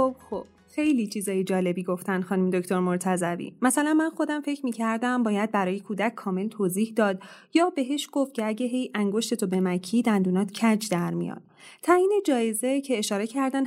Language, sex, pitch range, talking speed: Persian, female, 195-255 Hz, 160 wpm